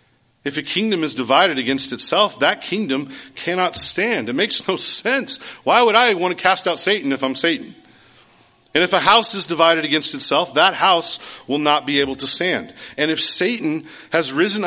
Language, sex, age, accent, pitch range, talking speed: English, male, 40-59, American, 140-200 Hz, 190 wpm